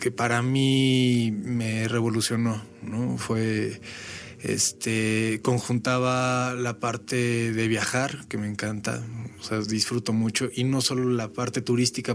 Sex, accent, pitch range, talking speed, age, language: male, Mexican, 110-125 Hz, 130 wpm, 20-39, Spanish